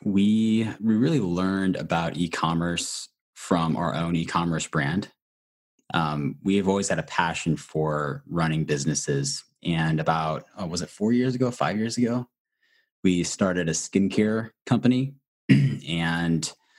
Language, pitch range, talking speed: English, 80-95 Hz, 135 wpm